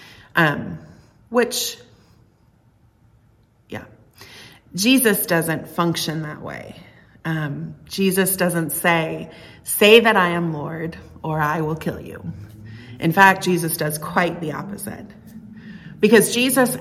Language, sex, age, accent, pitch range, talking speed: English, female, 30-49, American, 130-190 Hz, 110 wpm